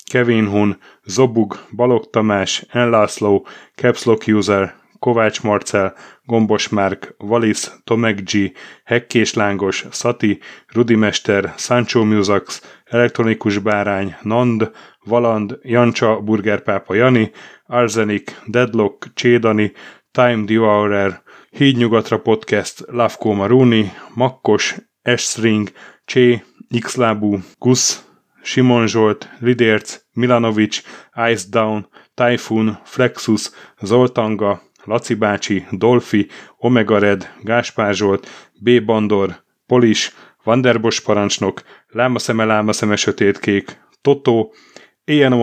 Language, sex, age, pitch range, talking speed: Hungarian, male, 30-49, 105-120 Hz, 90 wpm